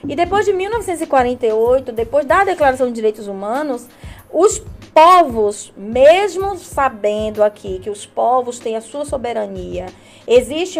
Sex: female